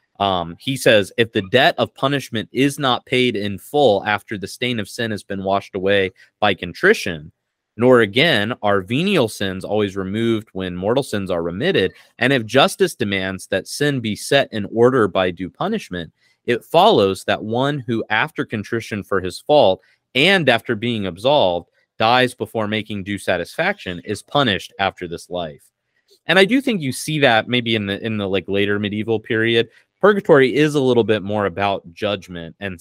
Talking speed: 180 wpm